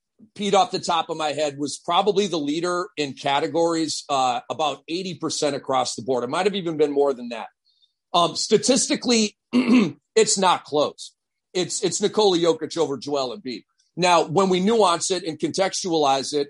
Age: 40-59